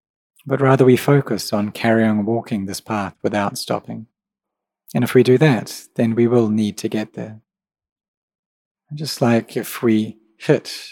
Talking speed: 155 wpm